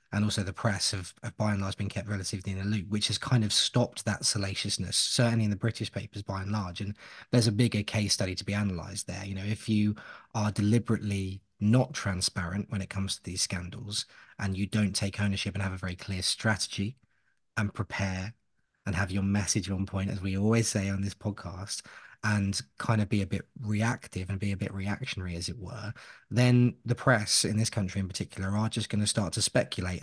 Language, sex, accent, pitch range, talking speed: English, male, British, 95-110 Hz, 220 wpm